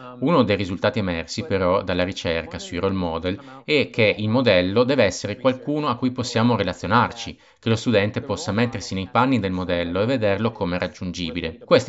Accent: native